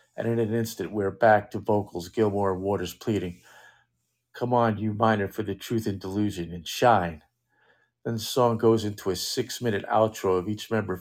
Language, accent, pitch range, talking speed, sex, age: English, American, 95-115 Hz, 185 wpm, male, 50-69